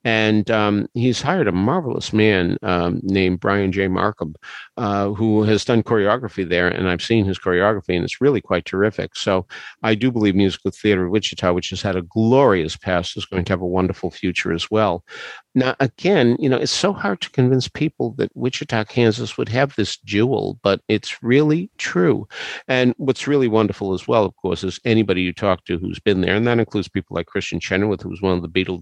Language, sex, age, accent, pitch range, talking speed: English, male, 50-69, American, 90-110 Hz, 210 wpm